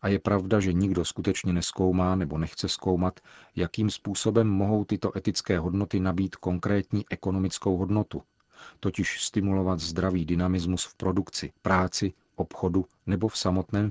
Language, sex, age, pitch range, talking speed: Czech, male, 40-59, 90-100 Hz, 135 wpm